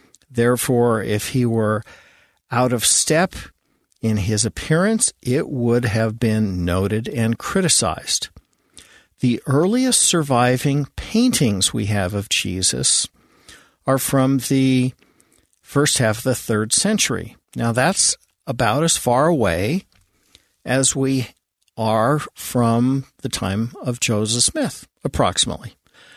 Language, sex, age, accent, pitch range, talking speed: English, male, 50-69, American, 110-135 Hz, 115 wpm